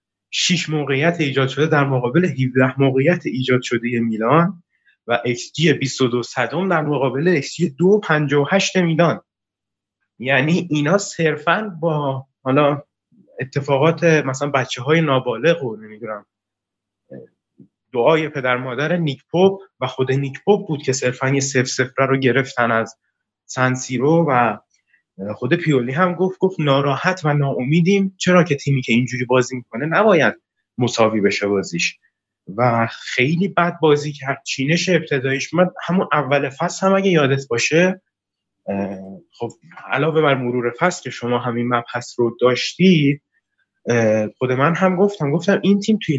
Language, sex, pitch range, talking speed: Persian, male, 120-165 Hz, 135 wpm